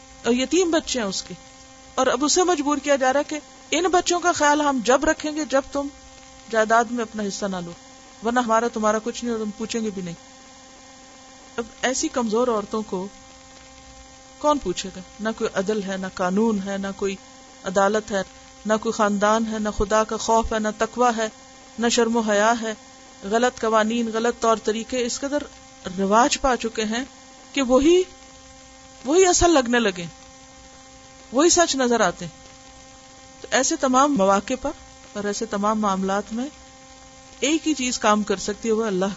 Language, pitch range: Urdu, 195-265 Hz